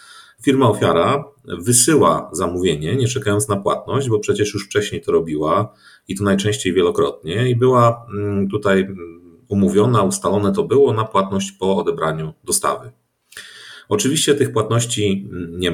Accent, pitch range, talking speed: native, 90-105 Hz, 130 wpm